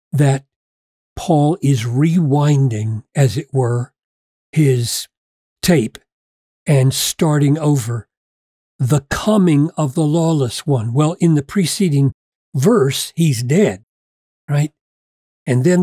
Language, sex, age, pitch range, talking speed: English, male, 40-59, 135-190 Hz, 105 wpm